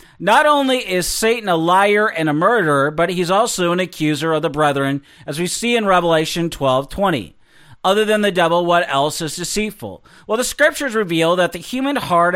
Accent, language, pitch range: American, English, 150-205 Hz